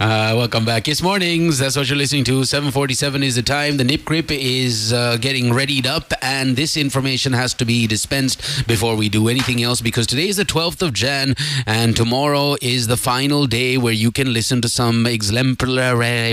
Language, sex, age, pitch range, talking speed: English, male, 30-49, 115-140 Hz, 195 wpm